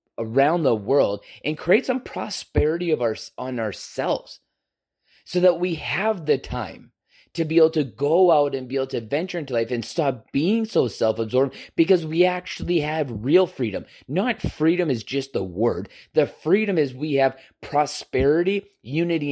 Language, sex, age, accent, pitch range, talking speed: English, male, 30-49, American, 135-180 Hz, 170 wpm